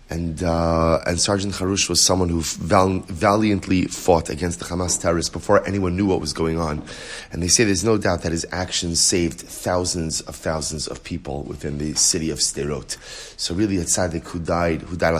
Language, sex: English, male